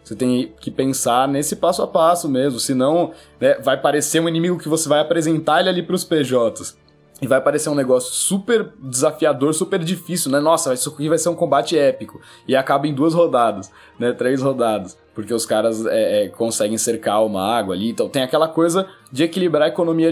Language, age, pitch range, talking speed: Portuguese, 20-39, 120-165 Hz, 205 wpm